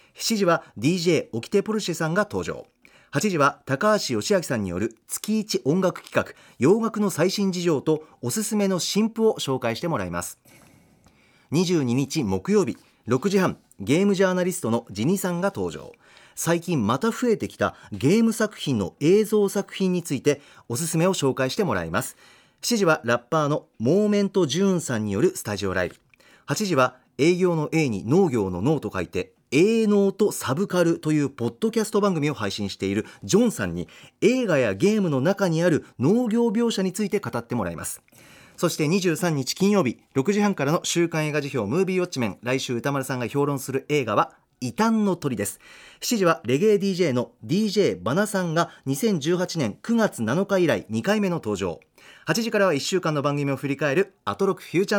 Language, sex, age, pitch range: Japanese, male, 40-59, 135-200 Hz